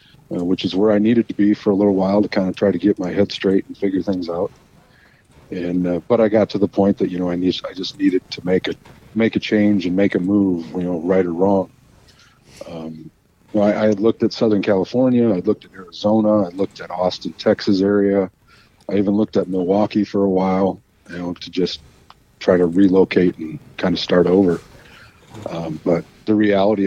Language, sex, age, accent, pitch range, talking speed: English, male, 40-59, American, 90-105 Hz, 220 wpm